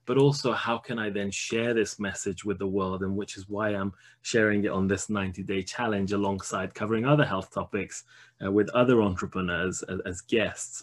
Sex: male